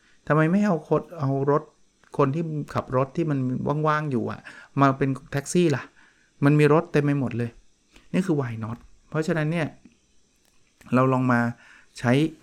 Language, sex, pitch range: Thai, male, 120-150 Hz